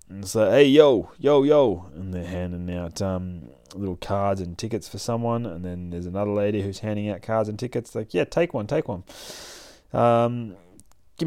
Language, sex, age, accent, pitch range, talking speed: English, male, 20-39, Australian, 90-110 Hz, 195 wpm